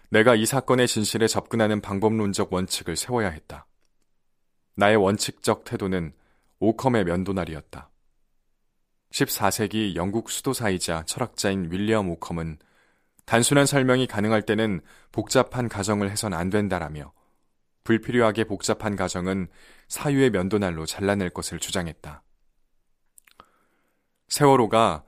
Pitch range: 90-115 Hz